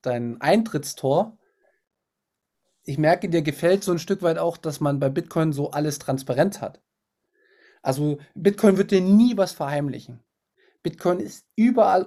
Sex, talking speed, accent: male, 145 wpm, German